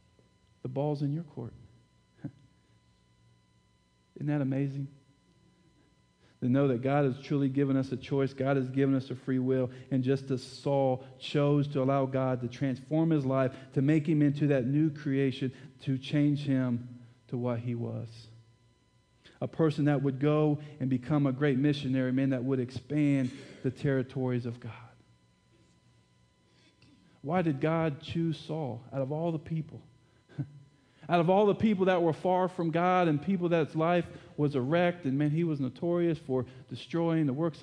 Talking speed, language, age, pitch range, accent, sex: 165 wpm, English, 40-59, 125-155 Hz, American, male